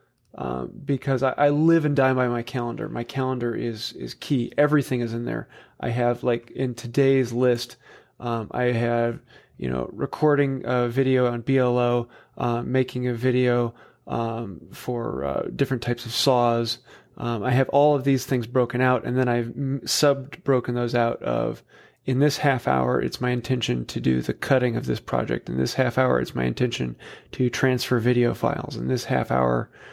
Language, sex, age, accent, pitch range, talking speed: English, male, 30-49, American, 115-135 Hz, 185 wpm